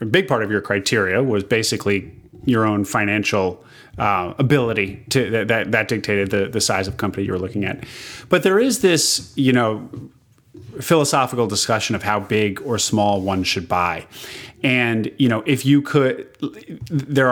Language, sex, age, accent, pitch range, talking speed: English, male, 30-49, American, 105-140 Hz, 175 wpm